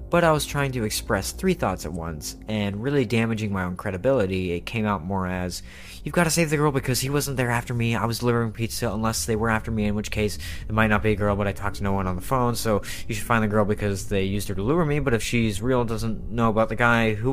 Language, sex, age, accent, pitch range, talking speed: English, male, 20-39, American, 95-125 Hz, 285 wpm